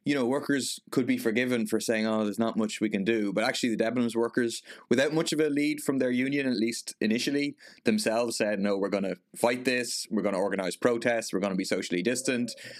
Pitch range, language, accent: 100-120 Hz, English, Irish